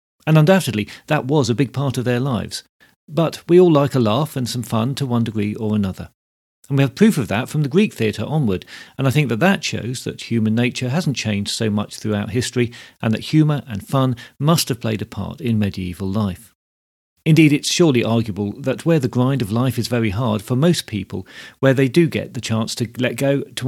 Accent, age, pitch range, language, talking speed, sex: British, 40-59, 110-140 Hz, English, 225 wpm, male